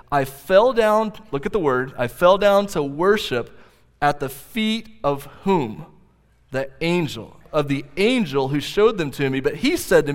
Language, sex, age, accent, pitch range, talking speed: English, male, 30-49, American, 145-195 Hz, 185 wpm